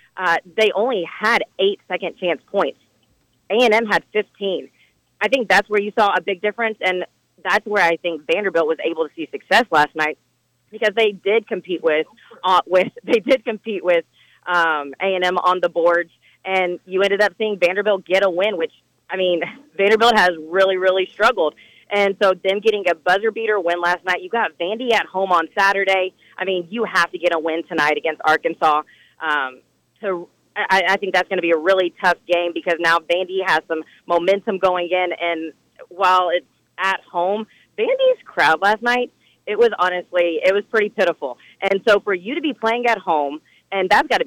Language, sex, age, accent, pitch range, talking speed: English, female, 30-49, American, 175-210 Hz, 200 wpm